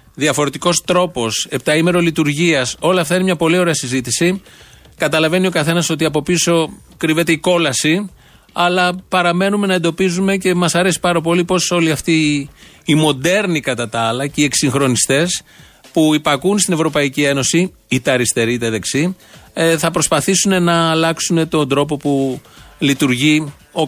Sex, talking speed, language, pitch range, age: male, 145 wpm, Greek, 135-175 Hz, 30-49